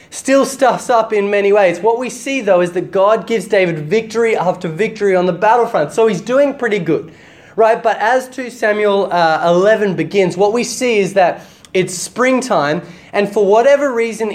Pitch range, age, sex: 170-220 Hz, 20-39, male